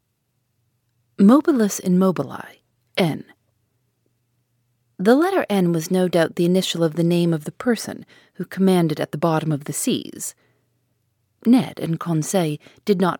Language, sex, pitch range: English, female, 130-195 Hz